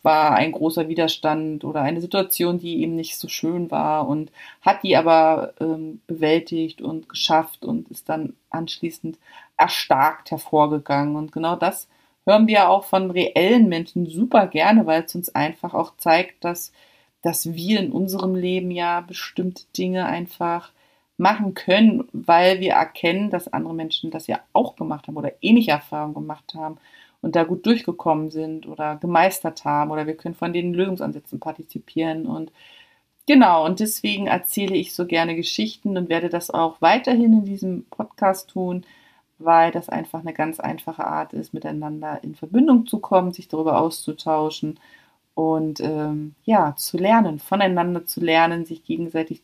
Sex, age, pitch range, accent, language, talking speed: female, 40-59, 160-185 Hz, German, German, 160 wpm